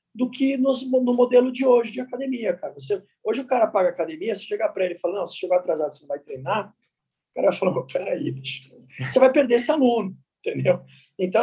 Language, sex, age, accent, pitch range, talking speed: English, male, 20-39, Brazilian, 175-255 Hz, 225 wpm